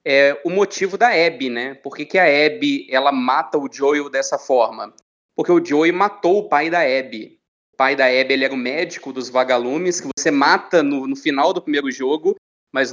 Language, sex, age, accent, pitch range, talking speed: Portuguese, male, 20-39, Brazilian, 135-185 Hz, 210 wpm